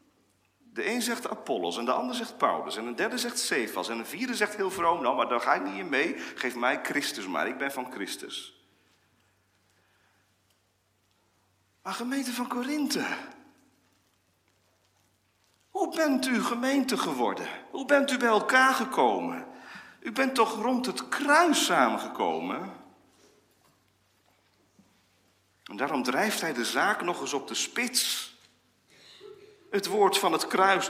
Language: Dutch